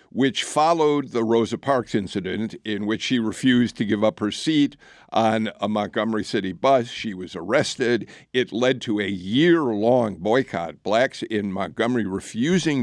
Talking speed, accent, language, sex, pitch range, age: 155 wpm, American, English, male, 110-160 Hz, 50-69